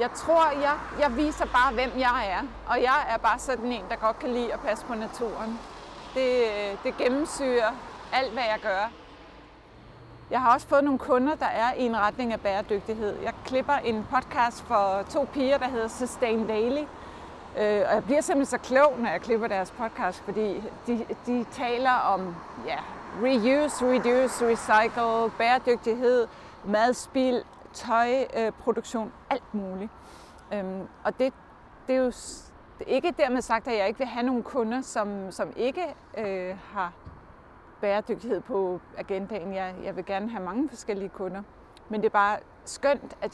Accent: native